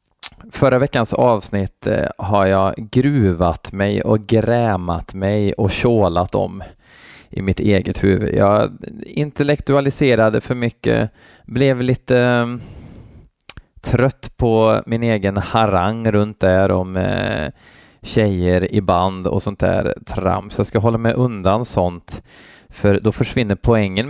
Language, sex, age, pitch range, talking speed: Swedish, male, 20-39, 95-115 Hz, 120 wpm